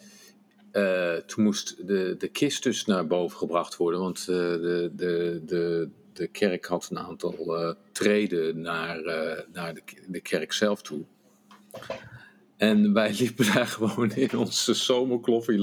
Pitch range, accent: 95-135 Hz, Dutch